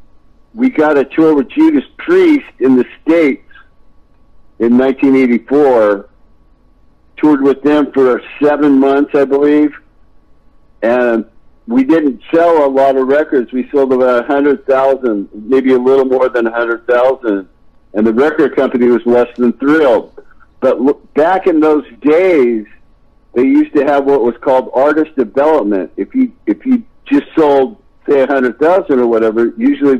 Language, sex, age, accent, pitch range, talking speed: English, male, 60-79, American, 115-145 Hz, 140 wpm